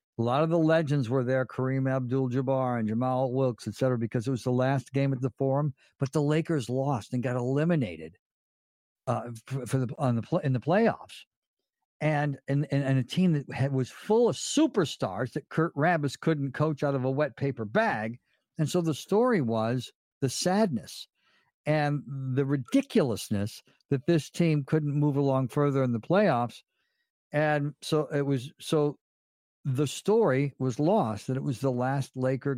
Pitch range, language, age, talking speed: 125-150 Hz, English, 60-79, 175 wpm